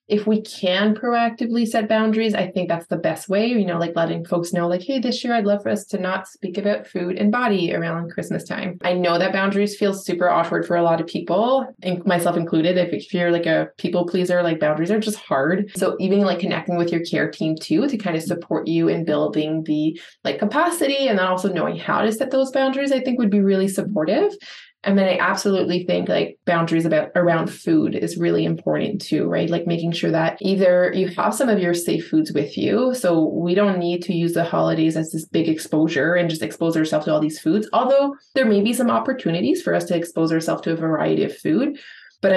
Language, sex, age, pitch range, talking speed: English, female, 20-39, 165-205 Hz, 230 wpm